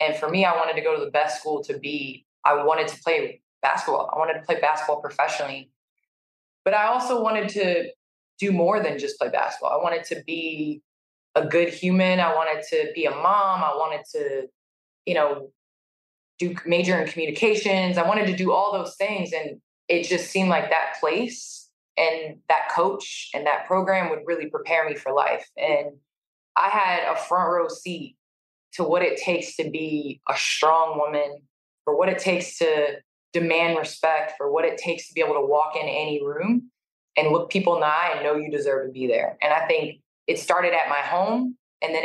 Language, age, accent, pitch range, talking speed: English, 20-39, American, 150-185 Hz, 200 wpm